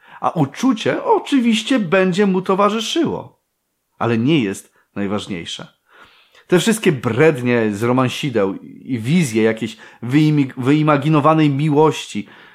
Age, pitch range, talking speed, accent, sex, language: 30-49, 110-155 Hz, 95 wpm, native, male, Polish